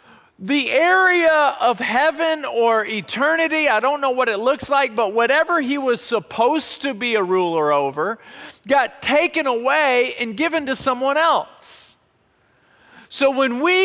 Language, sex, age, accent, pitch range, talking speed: English, male, 40-59, American, 230-300 Hz, 145 wpm